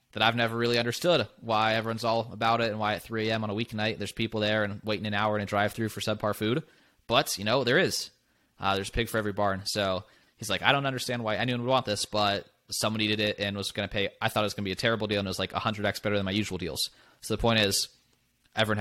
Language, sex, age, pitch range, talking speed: English, male, 20-39, 100-115 Hz, 270 wpm